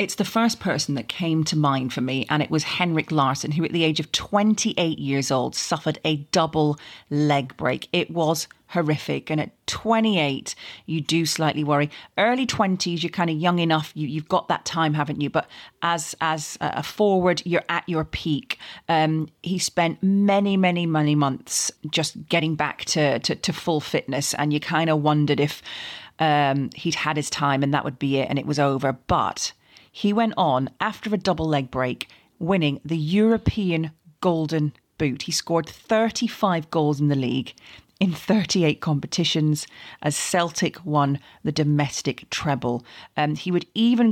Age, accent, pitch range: 40-59, British, 145-175 Hz